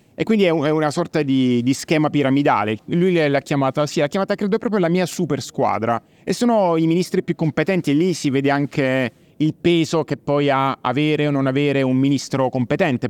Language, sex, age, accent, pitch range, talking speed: Italian, male, 30-49, native, 130-170 Hz, 200 wpm